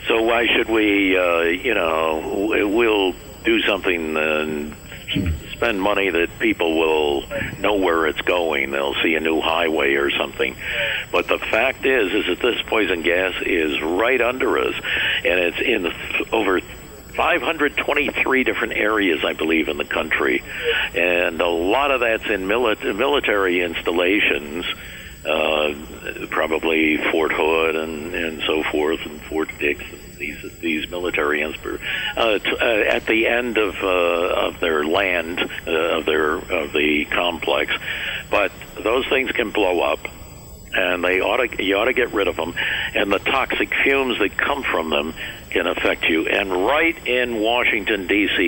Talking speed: 155 wpm